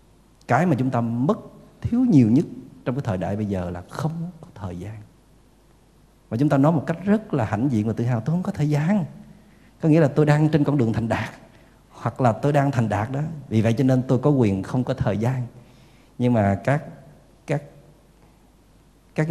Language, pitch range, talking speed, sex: Vietnamese, 115-155 Hz, 220 wpm, male